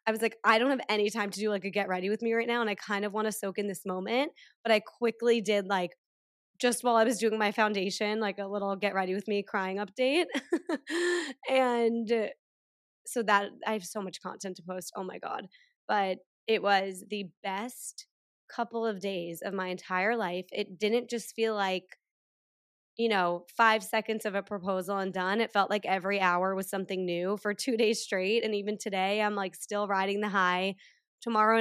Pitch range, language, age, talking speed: 195-230 Hz, English, 20-39, 210 wpm